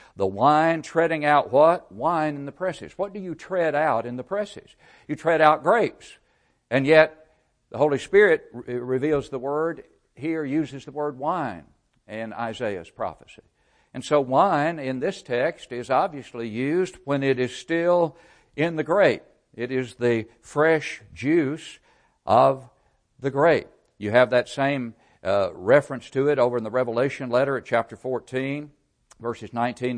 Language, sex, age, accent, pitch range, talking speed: English, male, 60-79, American, 120-155 Hz, 160 wpm